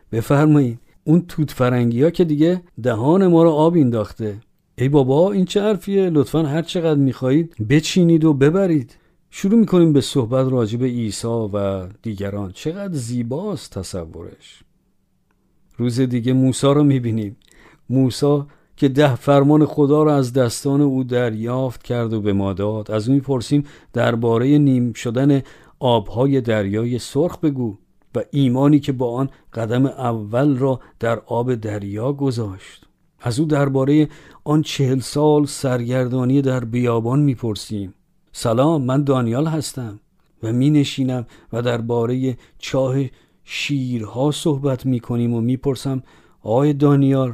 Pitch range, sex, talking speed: 115-145 Hz, male, 135 wpm